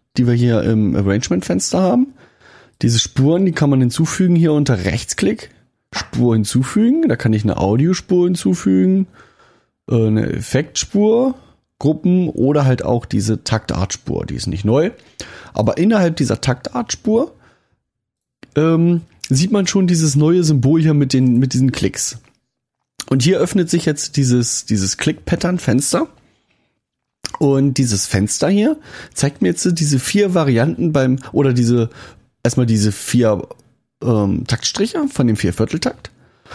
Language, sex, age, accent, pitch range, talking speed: German, male, 30-49, German, 115-175 Hz, 135 wpm